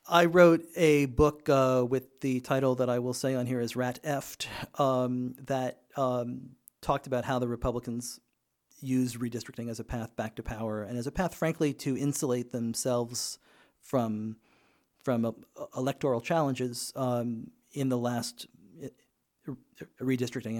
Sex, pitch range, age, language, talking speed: male, 120-140 Hz, 40-59, English, 145 wpm